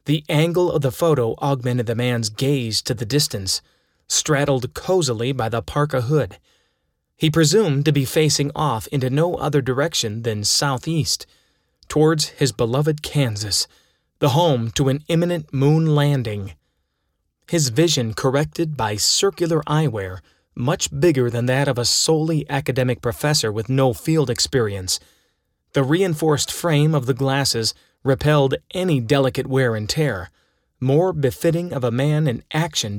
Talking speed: 145 wpm